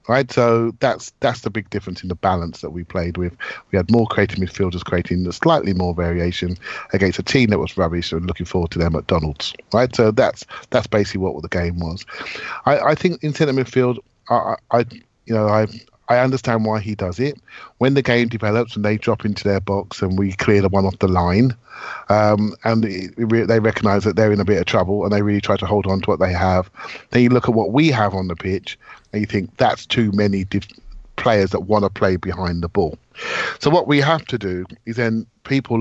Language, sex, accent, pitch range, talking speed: English, male, British, 100-120 Hz, 230 wpm